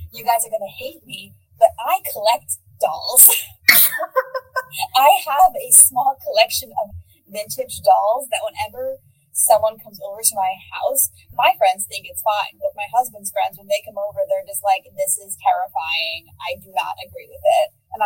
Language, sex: English, female